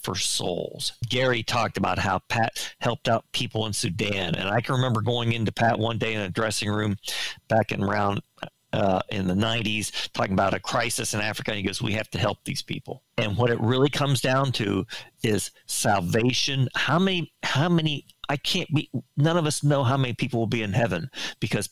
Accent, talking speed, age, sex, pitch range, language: American, 205 wpm, 50-69, male, 110-145 Hz, English